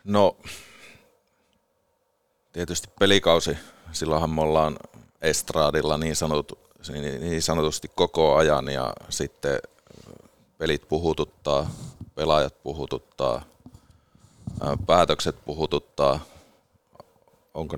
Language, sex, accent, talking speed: Finnish, male, native, 70 wpm